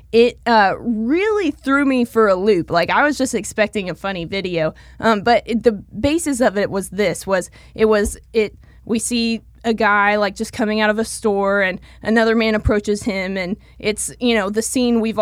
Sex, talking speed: female, 200 wpm